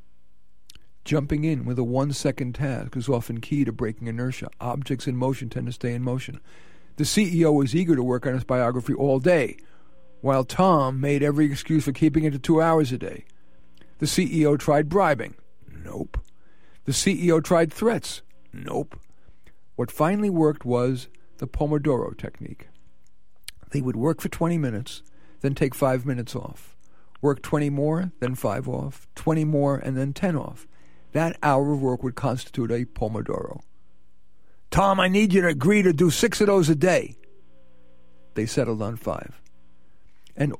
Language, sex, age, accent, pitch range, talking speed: English, male, 50-69, American, 110-155 Hz, 165 wpm